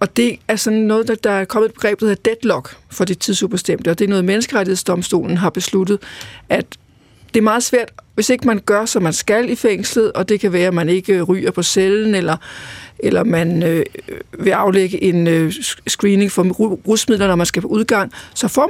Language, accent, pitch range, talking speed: Danish, native, 180-220 Hz, 200 wpm